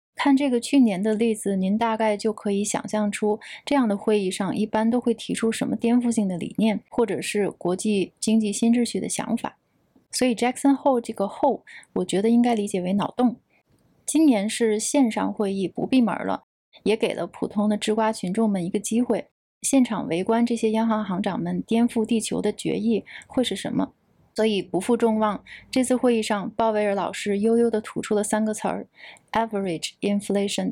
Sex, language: female, Chinese